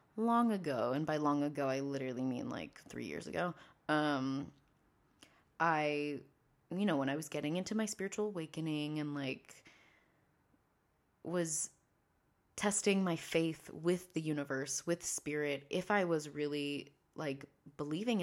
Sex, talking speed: female, 140 wpm